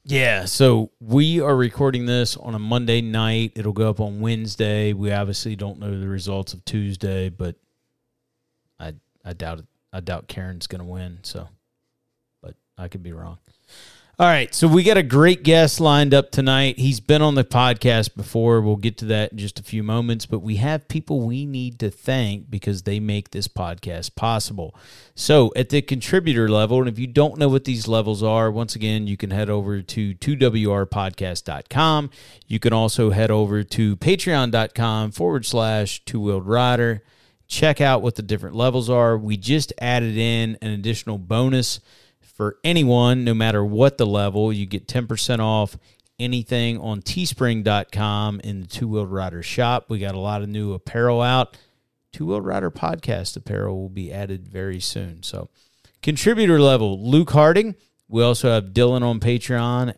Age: 40-59